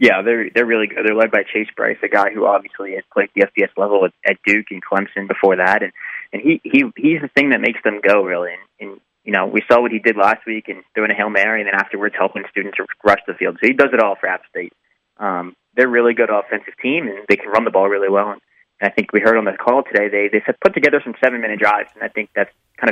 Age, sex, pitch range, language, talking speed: 20-39, male, 105-125 Hz, English, 280 wpm